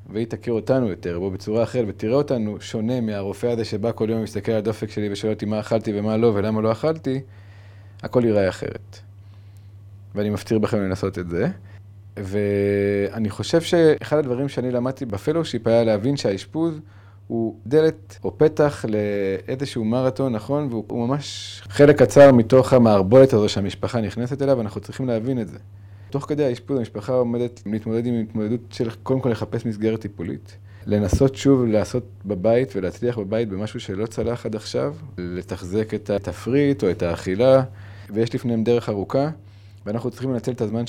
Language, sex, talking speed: Hebrew, male, 160 wpm